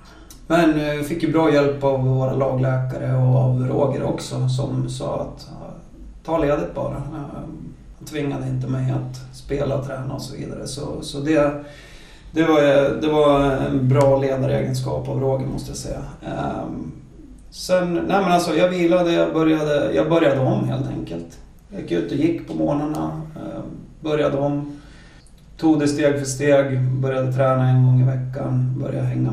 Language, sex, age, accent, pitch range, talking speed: Swedish, male, 30-49, native, 130-145 Hz, 155 wpm